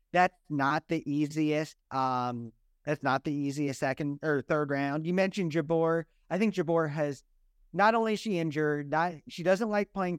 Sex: male